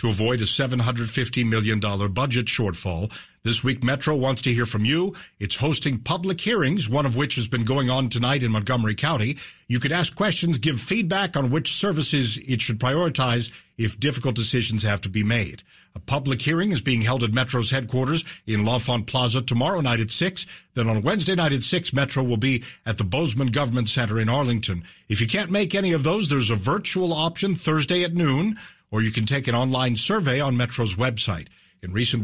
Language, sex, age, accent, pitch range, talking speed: English, male, 50-69, American, 115-160 Hz, 200 wpm